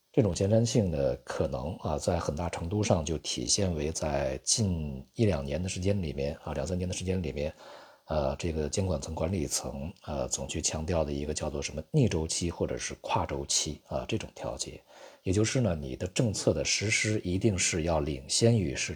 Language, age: Chinese, 50-69